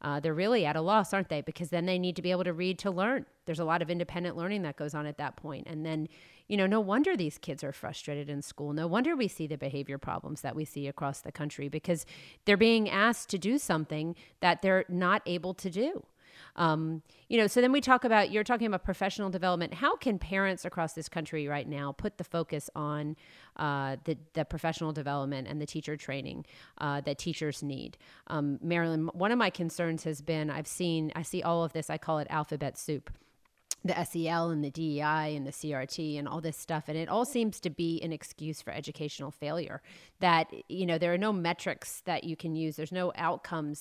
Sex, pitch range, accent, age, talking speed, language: female, 150-185 Hz, American, 30-49, 225 wpm, English